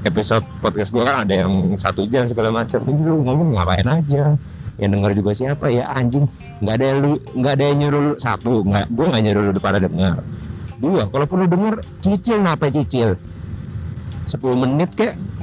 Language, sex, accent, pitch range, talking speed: Indonesian, male, native, 100-135 Hz, 170 wpm